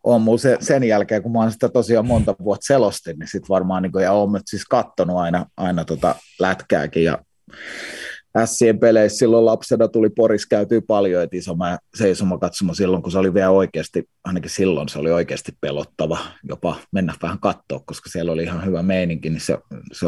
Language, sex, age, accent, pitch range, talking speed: Finnish, male, 30-49, native, 90-115 Hz, 170 wpm